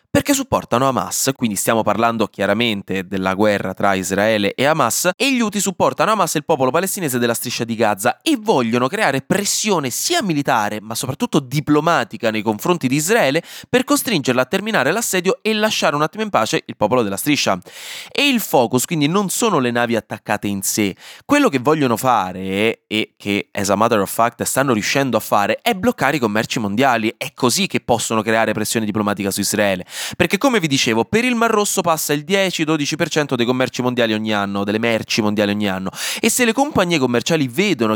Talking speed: 190 wpm